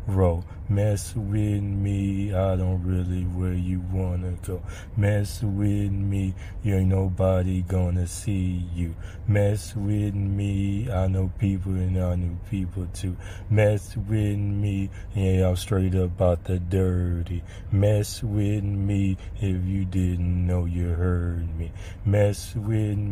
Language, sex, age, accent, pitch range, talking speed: English, male, 30-49, American, 90-100 Hz, 140 wpm